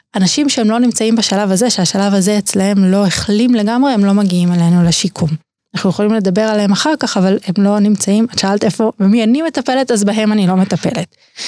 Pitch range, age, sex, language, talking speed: 190-230 Hz, 20-39, female, Hebrew, 200 wpm